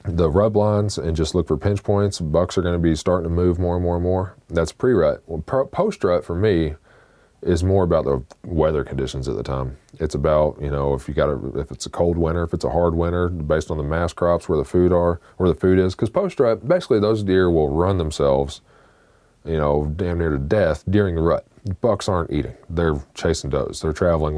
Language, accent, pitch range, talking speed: English, American, 75-95 Hz, 230 wpm